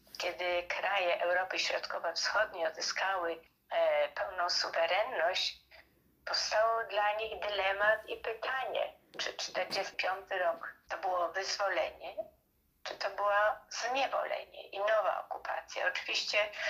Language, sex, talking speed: Polish, female, 95 wpm